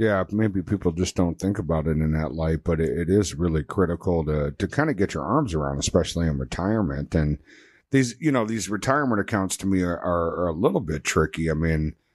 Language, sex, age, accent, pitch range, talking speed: English, male, 50-69, American, 80-105 Hz, 210 wpm